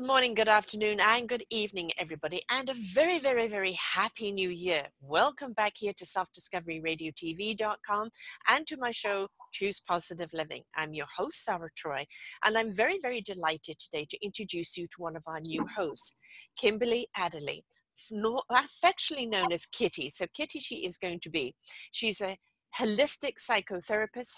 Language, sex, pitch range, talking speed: English, female, 180-235 Hz, 160 wpm